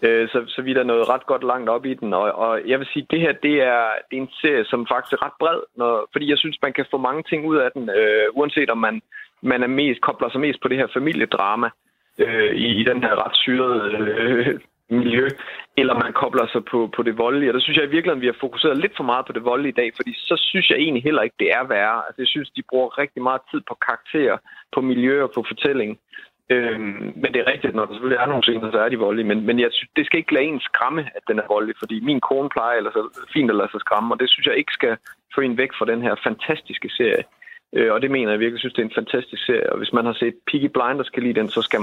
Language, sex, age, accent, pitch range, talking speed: Danish, male, 30-49, native, 115-155 Hz, 280 wpm